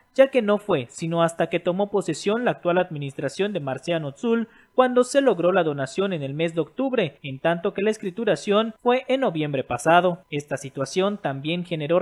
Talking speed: 190 wpm